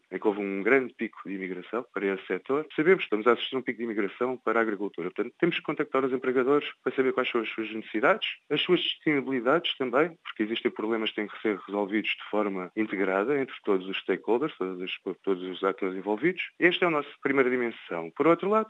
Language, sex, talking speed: Portuguese, male, 220 wpm